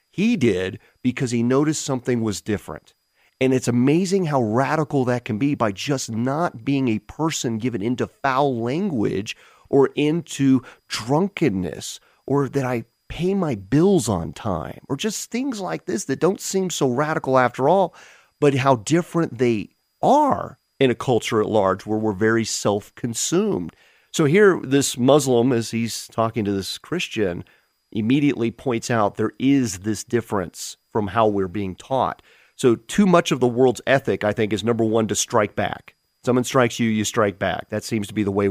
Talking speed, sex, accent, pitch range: 175 wpm, male, American, 110-140 Hz